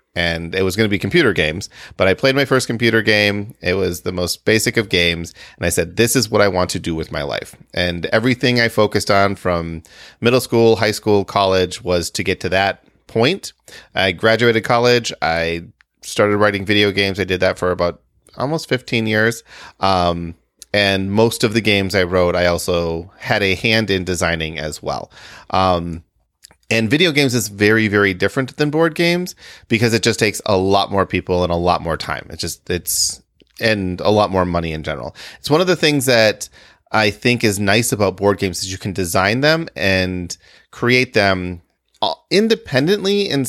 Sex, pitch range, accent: male, 90-115 Hz, American